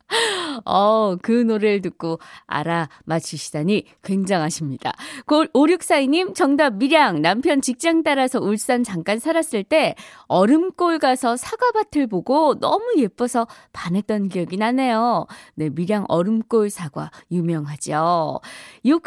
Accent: native